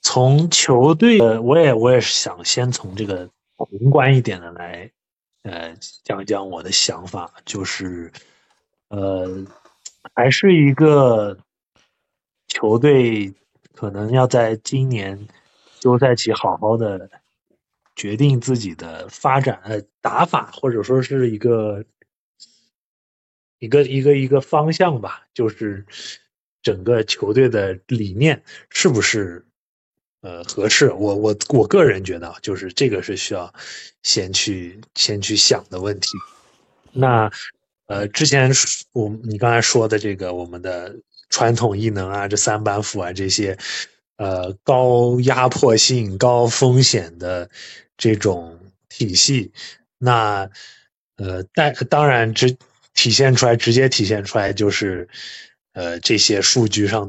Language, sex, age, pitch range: Chinese, male, 20-39, 100-125 Hz